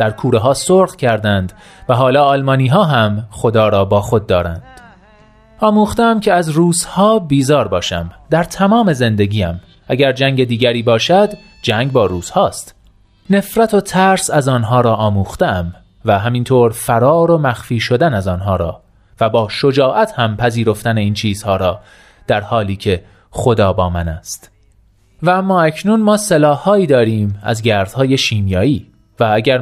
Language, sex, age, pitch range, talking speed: Persian, male, 30-49, 100-150 Hz, 150 wpm